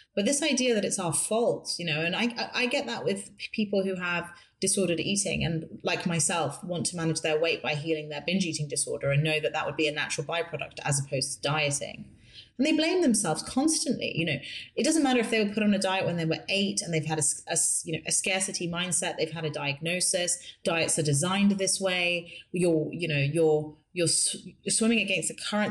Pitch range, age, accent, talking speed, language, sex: 155-190 Hz, 30-49, British, 230 wpm, English, female